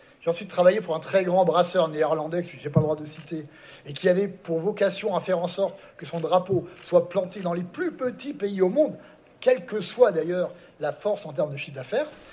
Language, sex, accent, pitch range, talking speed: French, male, French, 170-225 Hz, 240 wpm